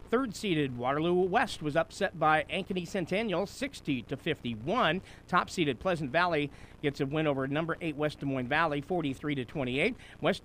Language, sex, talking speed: English, male, 160 wpm